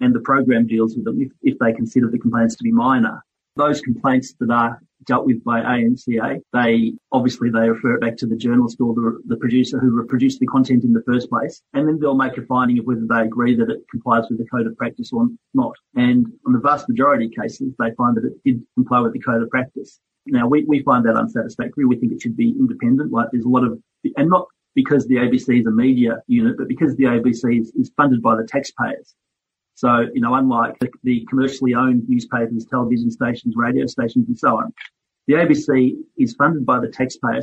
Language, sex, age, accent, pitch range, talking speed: English, male, 30-49, Australian, 120-155 Hz, 225 wpm